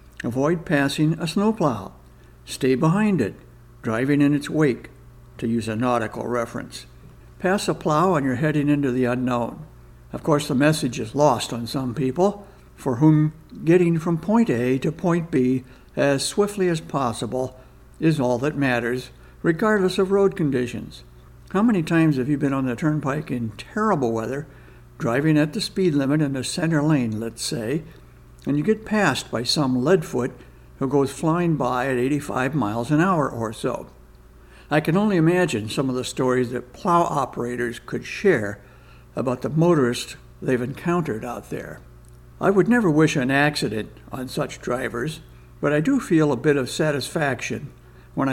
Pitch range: 120-160 Hz